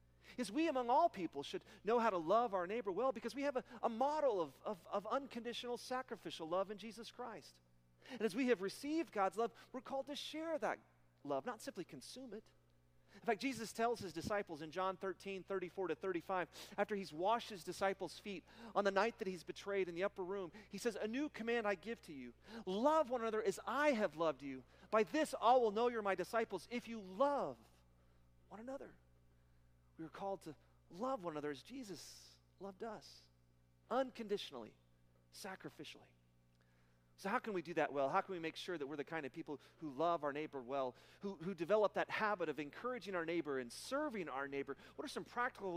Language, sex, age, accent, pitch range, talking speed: English, male, 40-59, American, 140-225 Hz, 200 wpm